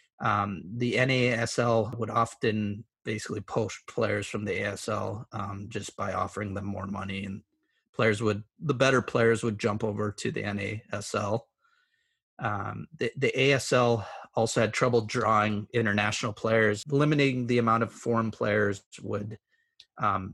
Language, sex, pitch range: English, male, 105-125 Hz